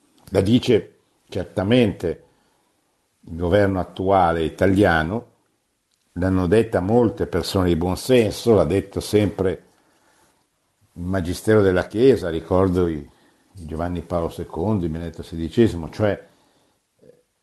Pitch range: 90-115 Hz